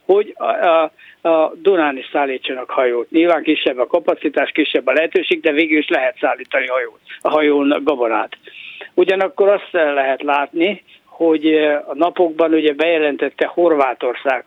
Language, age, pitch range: Hungarian, 60-79, 150-190 Hz